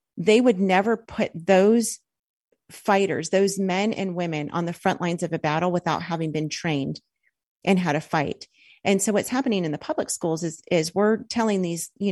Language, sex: English, female